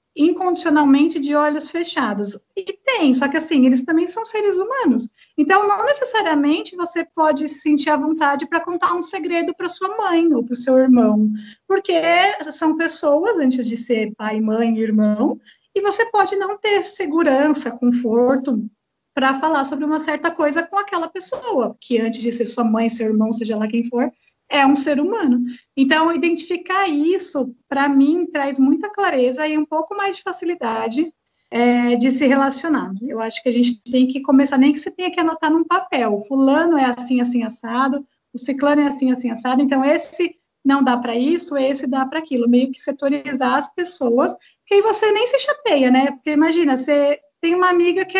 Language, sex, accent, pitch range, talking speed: Portuguese, female, Brazilian, 250-330 Hz, 185 wpm